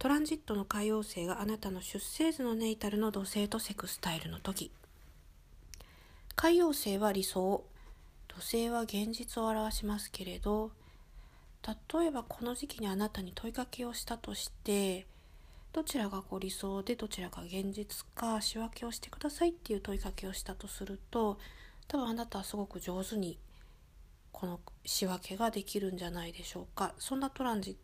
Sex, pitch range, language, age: female, 190-235 Hz, Japanese, 40-59